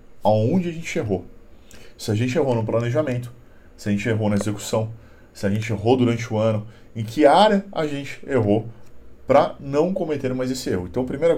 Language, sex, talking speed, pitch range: Portuguese, male, 200 wpm, 105-145 Hz